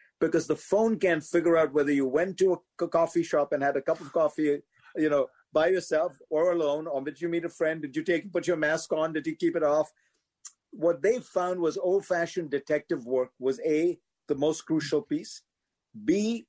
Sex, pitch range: male, 145-185 Hz